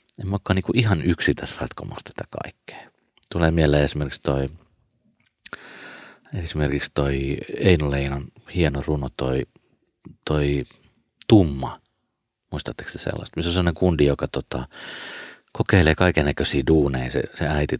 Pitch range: 70-90 Hz